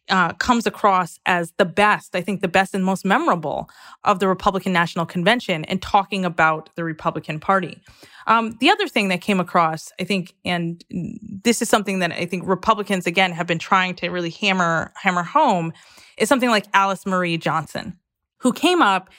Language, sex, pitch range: English, female, 175-230 Hz